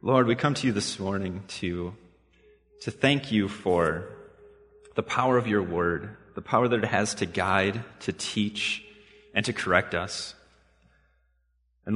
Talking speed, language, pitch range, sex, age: 155 wpm, English, 80-135 Hz, male, 30-49